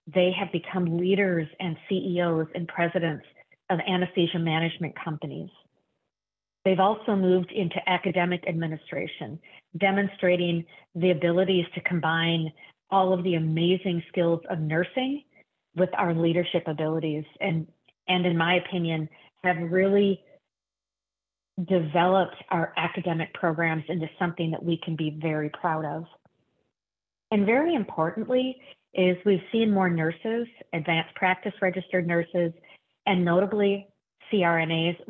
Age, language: 40-59, English